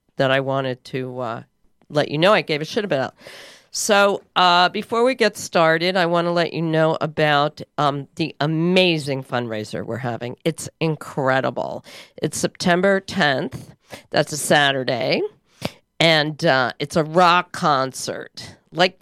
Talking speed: 150 wpm